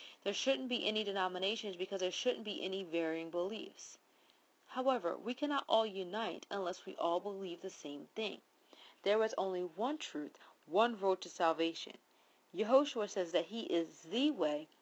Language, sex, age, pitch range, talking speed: English, female, 40-59, 175-240 Hz, 160 wpm